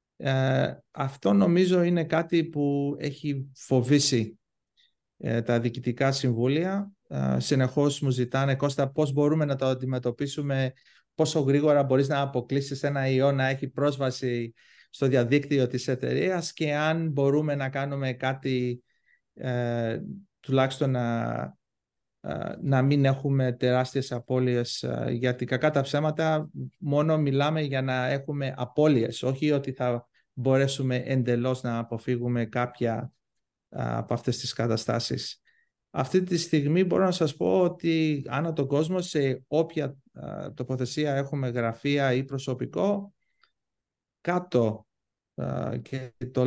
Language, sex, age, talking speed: Greek, male, 30-49, 125 wpm